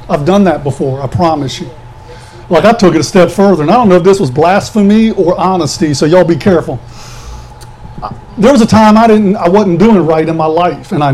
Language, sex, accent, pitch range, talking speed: English, male, American, 145-205 Hz, 230 wpm